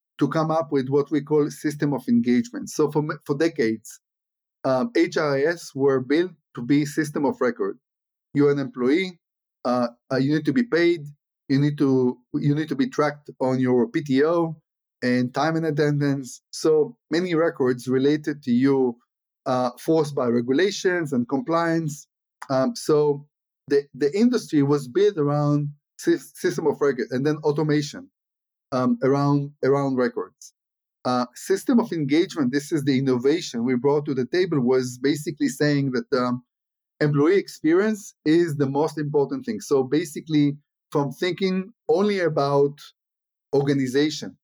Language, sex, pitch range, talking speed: English, male, 135-160 Hz, 150 wpm